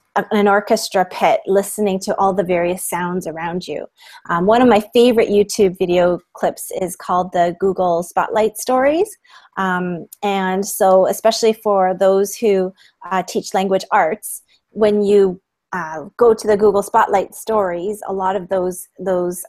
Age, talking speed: 30-49, 155 wpm